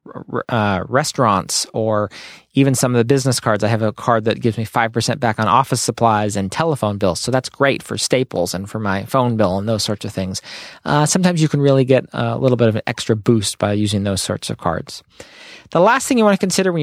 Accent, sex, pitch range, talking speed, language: American, male, 110-135 Hz, 235 wpm, English